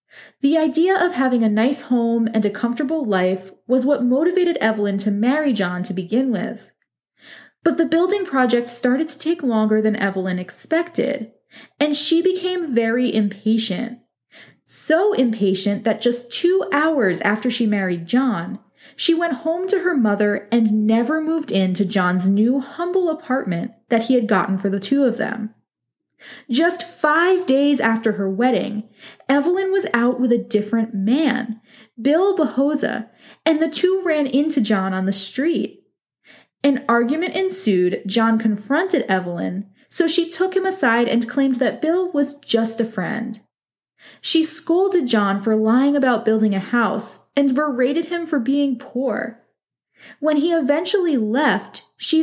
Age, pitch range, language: 20-39, 220-305 Hz, English